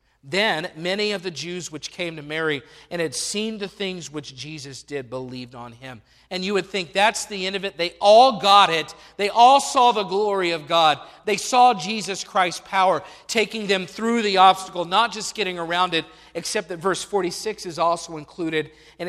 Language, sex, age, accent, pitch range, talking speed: English, male, 40-59, American, 145-190 Hz, 200 wpm